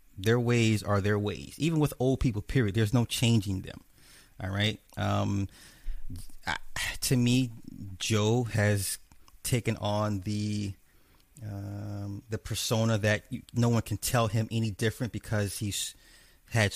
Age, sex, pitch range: 30-49, male, 100-130 Hz